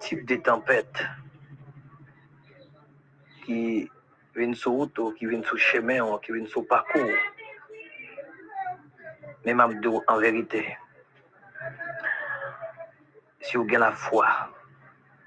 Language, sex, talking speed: English, male, 100 wpm